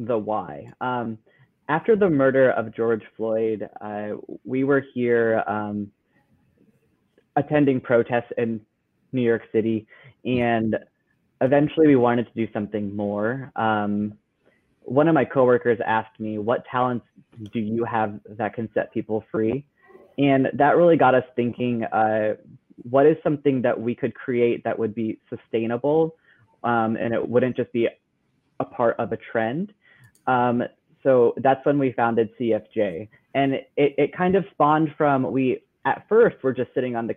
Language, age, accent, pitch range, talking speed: English, 20-39, American, 110-135 Hz, 155 wpm